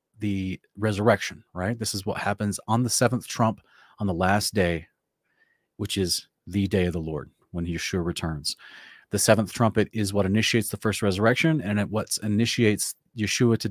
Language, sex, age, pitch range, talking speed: English, male, 30-49, 95-120 Hz, 175 wpm